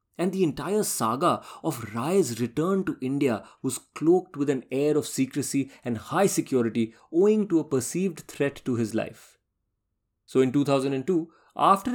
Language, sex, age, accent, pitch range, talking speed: English, male, 30-49, Indian, 115-160 Hz, 155 wpm